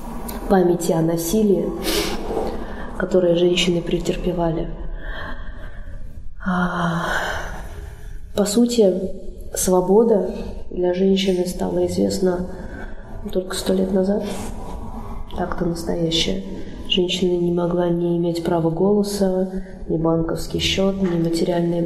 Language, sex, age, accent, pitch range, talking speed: Russian, female, 20-39, native, 175-205 Hz, 85 wpm